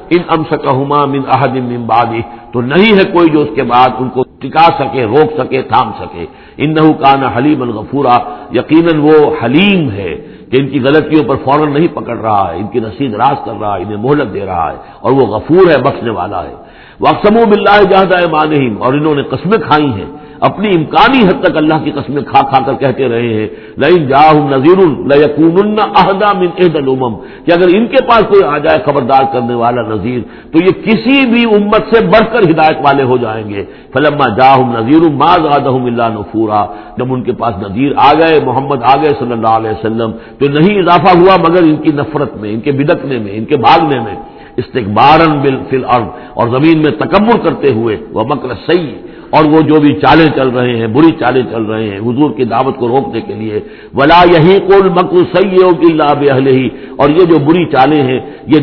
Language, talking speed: English, 145 wpm